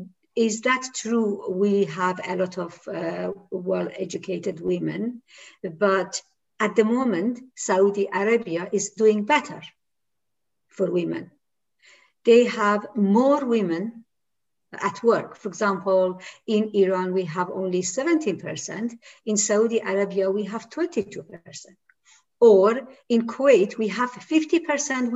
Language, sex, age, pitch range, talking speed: Persian, female, 50-69, 205-280 Hz, 115 wpm